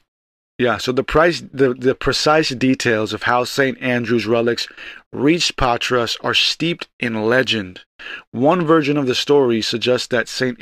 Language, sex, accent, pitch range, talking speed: English, male, American, 110-135 Hz, 145 wpm